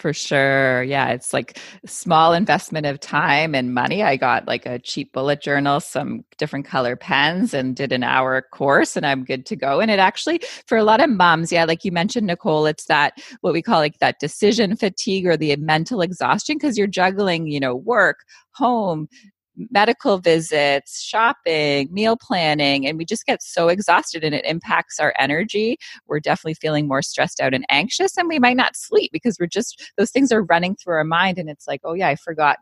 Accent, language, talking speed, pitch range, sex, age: American, English, 205 wpm, 140-205 Hz, female, 30-49